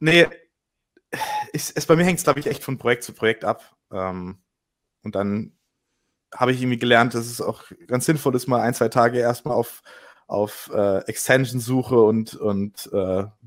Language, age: German, 20-39